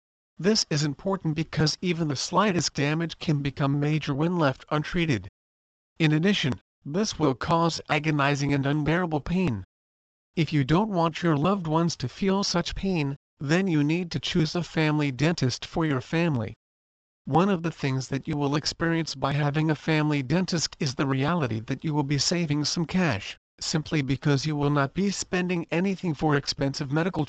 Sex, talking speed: male, 175 wpm